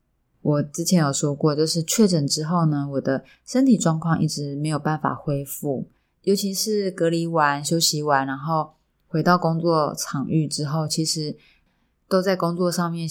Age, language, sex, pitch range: 20-39, Chinese, female, 145-175 Hz